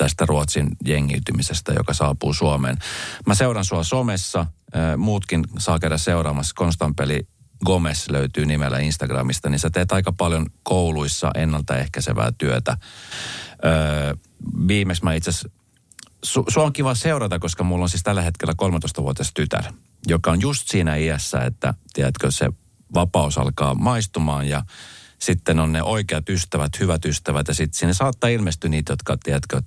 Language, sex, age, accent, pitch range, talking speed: Finnish, male, 40-59, native, 75-95 Hz, 145 wpm